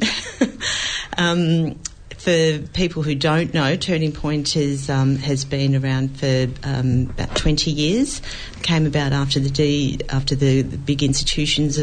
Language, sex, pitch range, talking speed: English, female, 130-150 Hz, 125 wpm